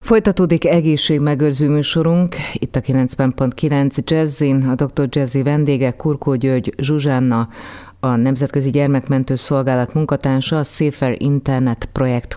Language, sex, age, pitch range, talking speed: Hungarian, female, 30-49, 125-145 Hz, 110 wpm